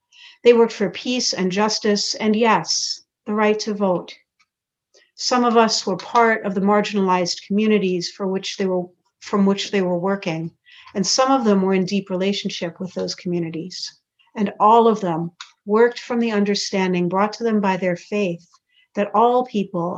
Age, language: 60-79, English